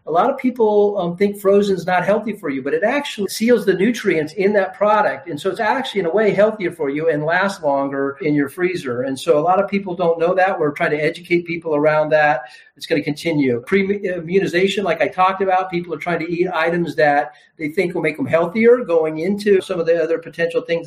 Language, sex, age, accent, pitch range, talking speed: English, male, 50-69, American, 155-195 Hz, 240 wpm